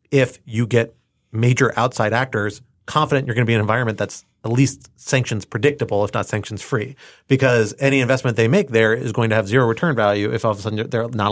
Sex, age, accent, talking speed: male, 30-49, American, 230 wpm